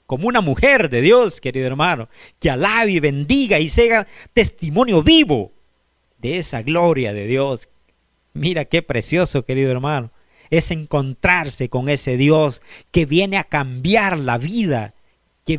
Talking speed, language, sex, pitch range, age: 140 wpm, Spanish, male, 120-175 Hz, 50-69